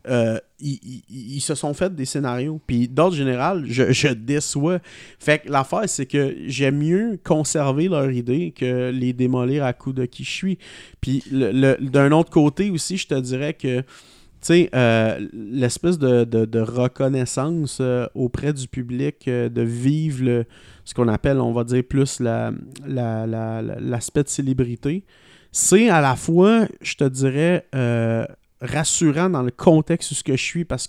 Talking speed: 175 wpm